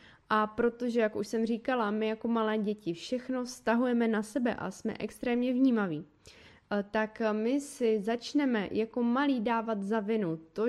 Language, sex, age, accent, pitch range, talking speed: Czech, female, 20-39, native, 205-235 Hz, 155 wpm